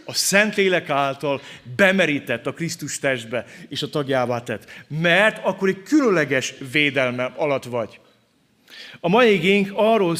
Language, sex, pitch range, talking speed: Hungarian, male, 170-230 Hz, 130 wpm